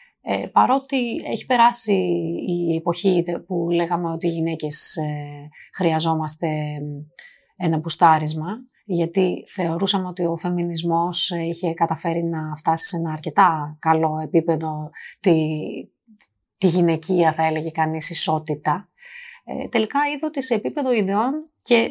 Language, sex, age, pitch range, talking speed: Greek, female, 30-49, 165-235 Hz, 110 wpm